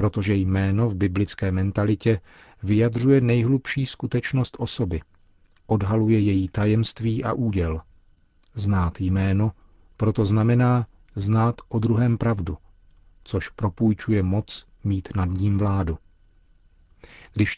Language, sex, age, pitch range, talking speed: Czech, male, 40-59, 90-115 Hz, 100 wpm